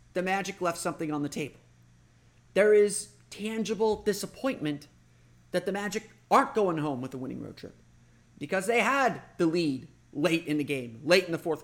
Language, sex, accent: English, male, American